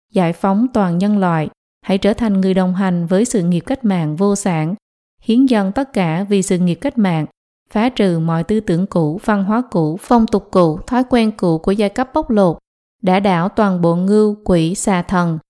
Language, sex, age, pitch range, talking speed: Vietnamese, female, 20-39, 175-220 Hz, 215 wpm